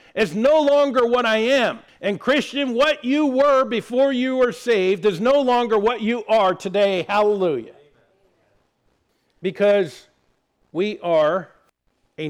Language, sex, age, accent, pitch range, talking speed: English, male, 50-69, American, 165-235 Hz, 130 wpm